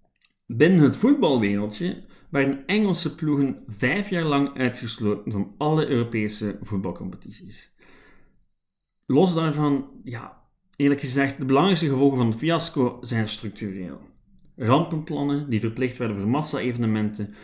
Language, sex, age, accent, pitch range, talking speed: Dutch, male, 40-59, Dutch, 110-145 Hz, 115 wpm